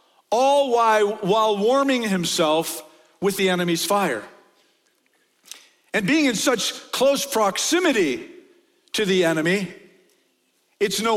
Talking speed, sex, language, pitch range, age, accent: 100 wpm, male, English, 205-285 Hz, 50-69, American